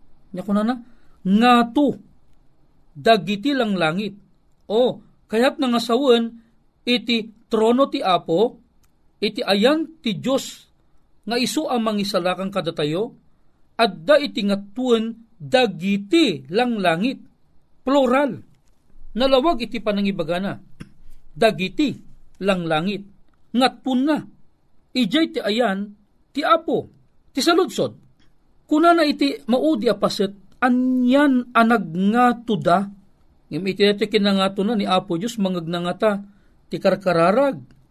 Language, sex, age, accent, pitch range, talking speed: Filipino, male, 40-59, native, 185-245 Hz, 100 wpm